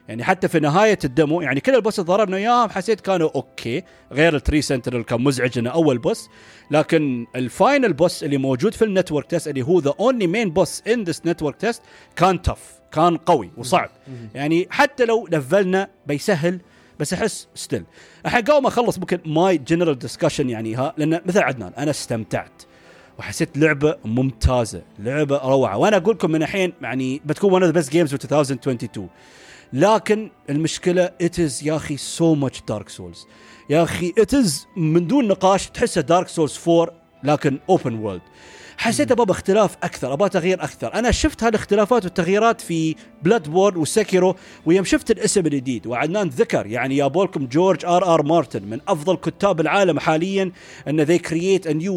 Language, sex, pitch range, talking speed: Arabic, male, 140-195 Hz, 165 wpm